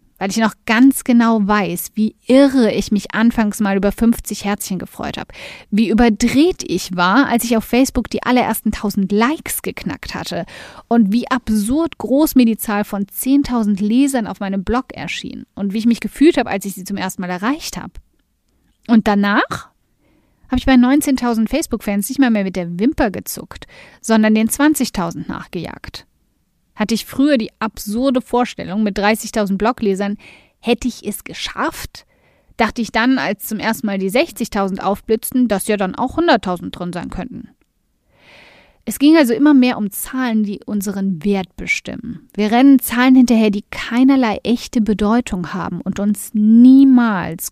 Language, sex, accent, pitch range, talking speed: German, female, German, 200-245 Hz, 165 wpm